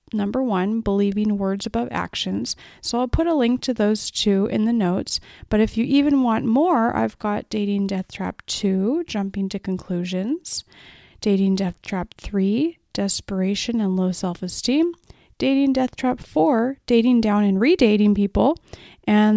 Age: 30-49